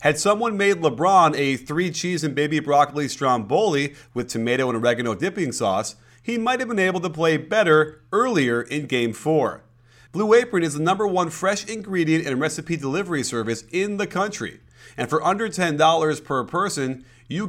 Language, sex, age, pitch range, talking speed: English, male, 30-49, 135-190 Hz, 175 wpm